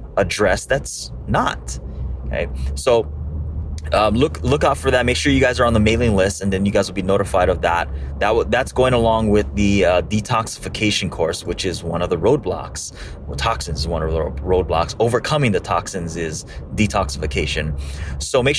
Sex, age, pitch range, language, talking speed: male, 20-39, 75-105 Hz, English, 190 wpm